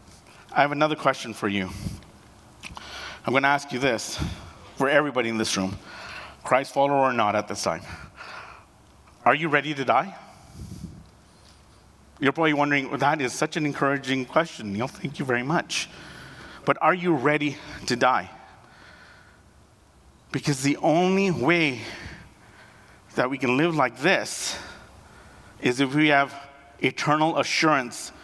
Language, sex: English, male